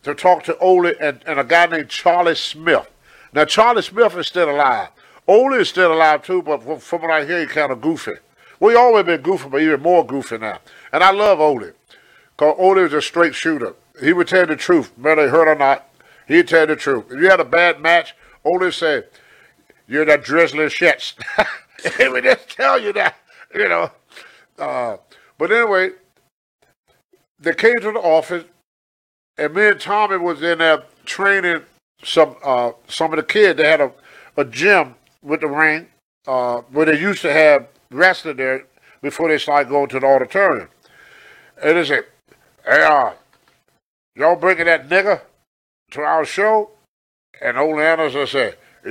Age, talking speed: 50-69, 180 wpm